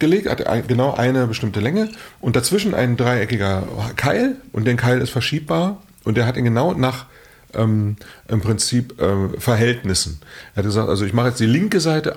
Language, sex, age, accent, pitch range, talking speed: German, male, 40-59, German, 100-135 Hz, 180 wpm